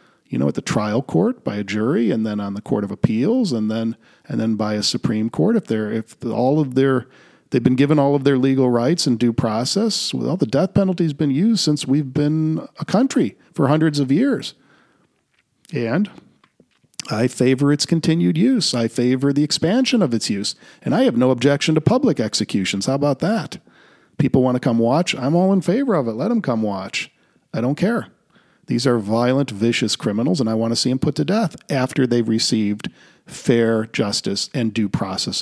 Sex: male